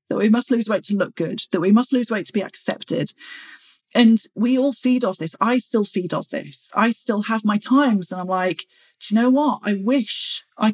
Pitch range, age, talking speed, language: 190-250 Hz, 40-59, 235 wpm, English